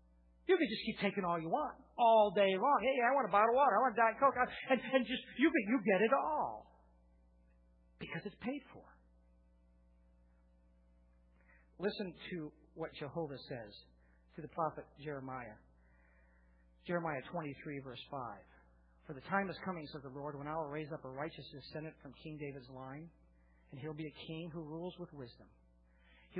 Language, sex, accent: English, male, American